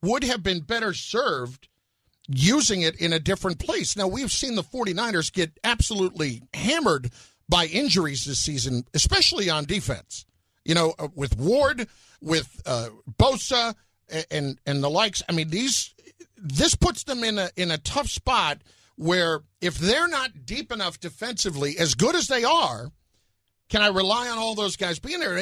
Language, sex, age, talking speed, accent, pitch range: English, male, 50-69, 170 wpm, American, 140-220 Hz